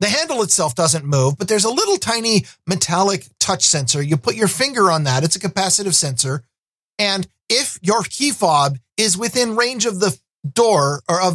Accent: American